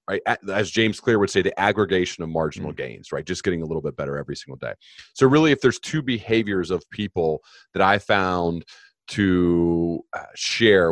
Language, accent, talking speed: English, American, 185 wpm